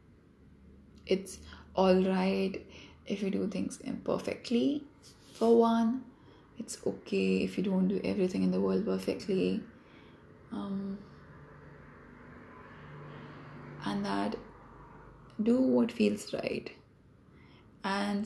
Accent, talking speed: Indian, 90 wpm